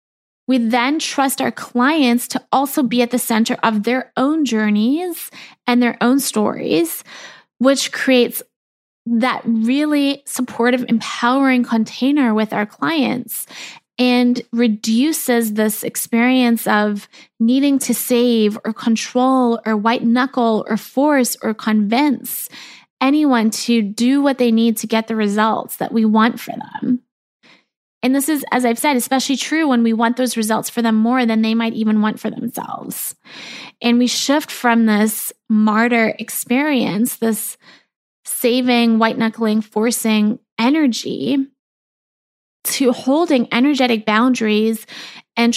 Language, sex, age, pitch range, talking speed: English, female, 20-39, 225-260 Hz, 135 wpm